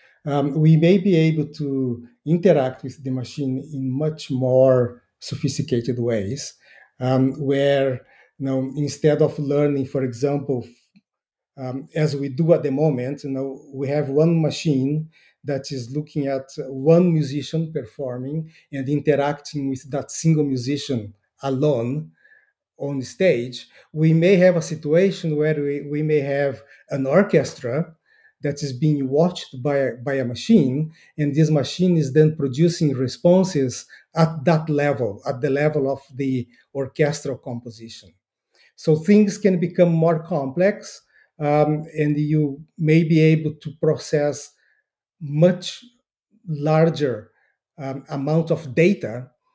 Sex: male